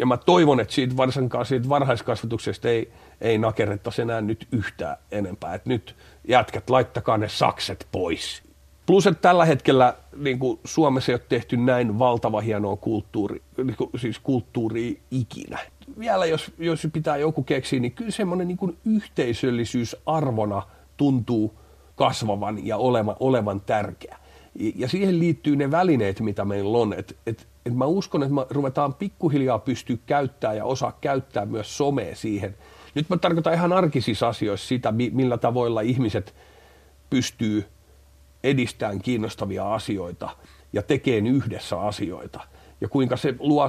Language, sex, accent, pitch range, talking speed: Finnish, male, native, 110-140 Hz, 145 wpm